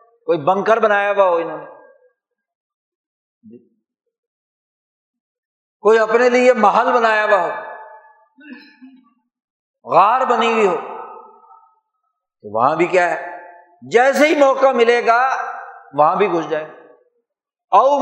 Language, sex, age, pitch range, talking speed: Urdu, male, 50-69, 220-345 Hz, 105 wpm